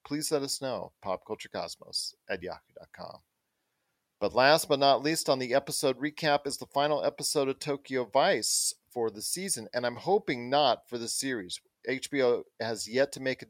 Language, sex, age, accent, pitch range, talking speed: English, male, 40-59, American, 120-150 Hz, 175 wpm